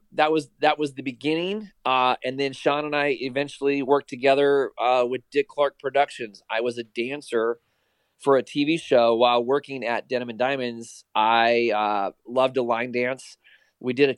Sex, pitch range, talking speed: male, 120-140 Hz, 180 wpm